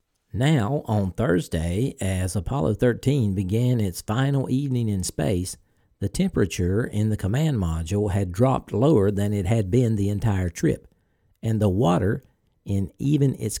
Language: English